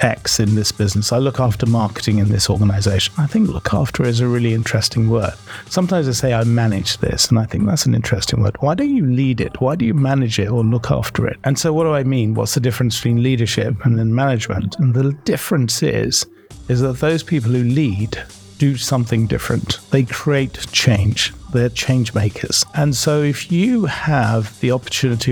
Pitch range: 110-135 Hz